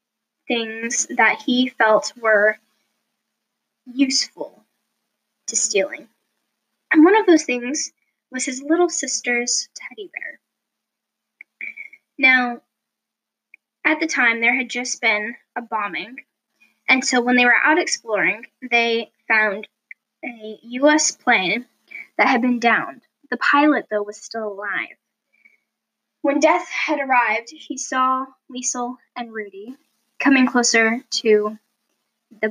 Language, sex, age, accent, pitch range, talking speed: English, female, 10-29, American, 225-270 Hz, 120 wpm